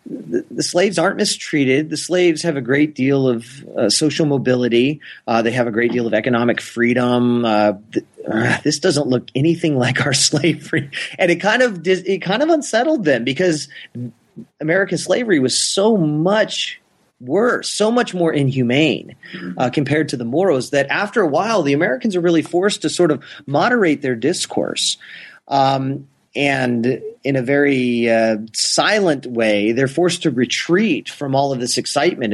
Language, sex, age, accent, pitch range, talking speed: English, male, 30-49, American, 120-160 Hz, 170 wpm